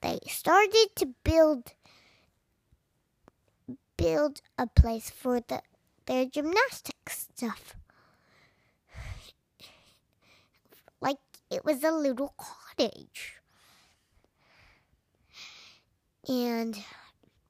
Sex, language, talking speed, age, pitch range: male, English, 65 wpm, 10-29, 230-360 Hz